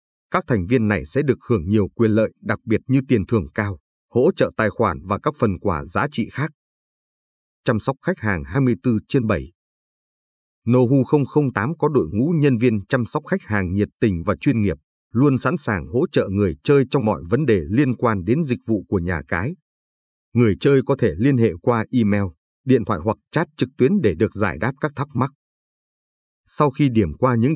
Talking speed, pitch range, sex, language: 205 wpm, 100-135 Hz, male, Vietnamese